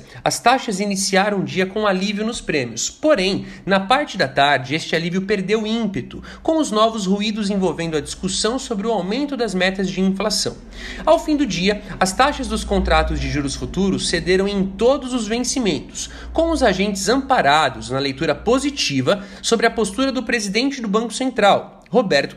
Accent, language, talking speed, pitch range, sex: Brazilian, Portuguese, 170 wpm, 180-235 Hz, male